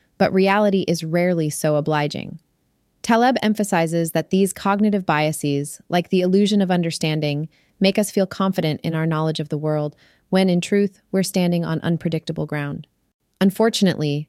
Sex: female